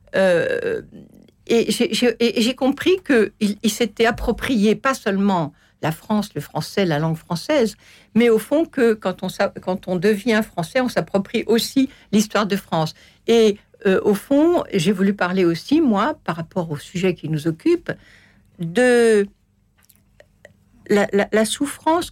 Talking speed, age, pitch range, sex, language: 155 wpm, 60-79, 165-225 Hz, female, French